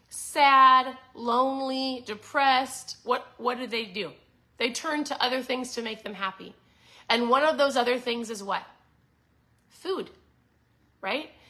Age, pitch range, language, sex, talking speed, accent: 30-49, 205-260 Hz, English, female, 140 wpm, American